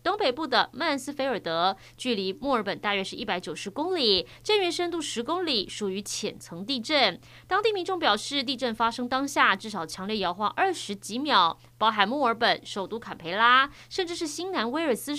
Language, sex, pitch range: Chinese, female, 195-285 Hz